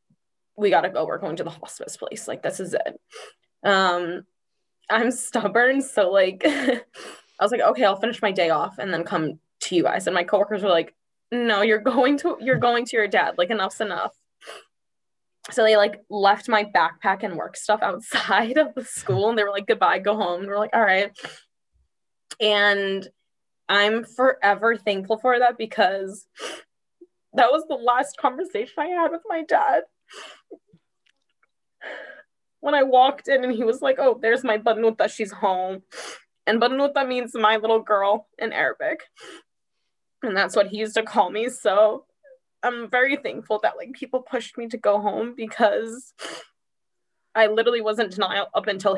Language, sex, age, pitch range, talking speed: English, female, 10-29, 200-255 Hz, 175 wpm